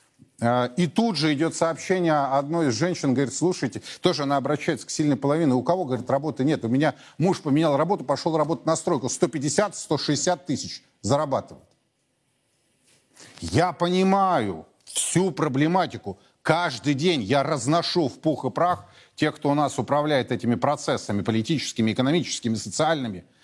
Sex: male